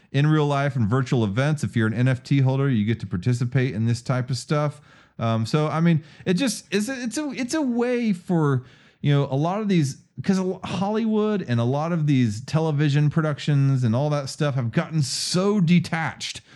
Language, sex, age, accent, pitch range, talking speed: English, male, 40-59, American, 110-155 Hz, 205 wpm